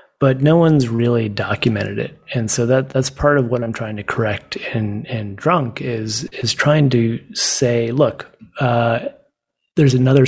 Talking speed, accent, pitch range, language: 170 wpm, American, 110-130 Hz, English